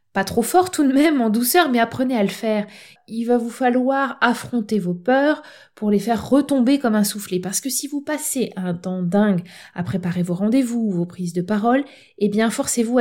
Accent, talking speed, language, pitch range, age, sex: French, 210 wpm, French, 185-230 Hz, 20-39, female